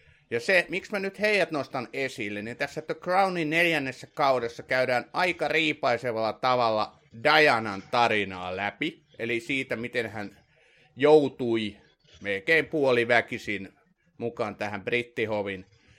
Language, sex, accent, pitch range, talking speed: Finnish, male, native, 115-150 Hz, 115 wpm